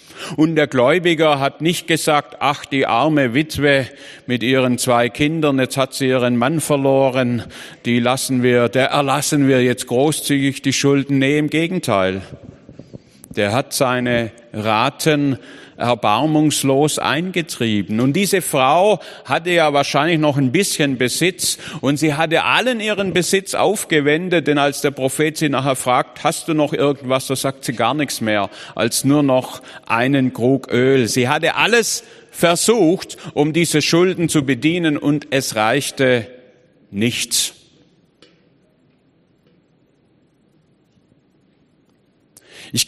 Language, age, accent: German, 50-69, German